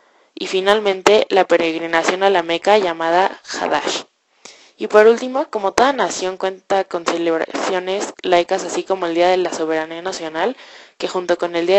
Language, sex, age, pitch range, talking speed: English, female, 20-39, 170-210 Hz, 165 wpm